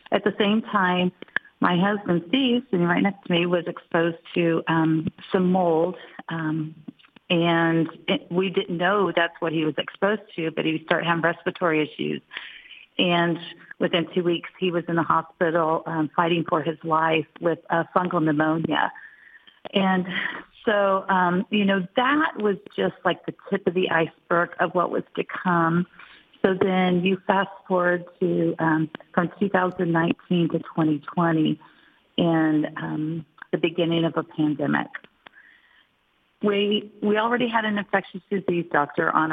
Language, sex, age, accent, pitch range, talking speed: English, female, 40-59, American, 165-190 Hz, 155 wpm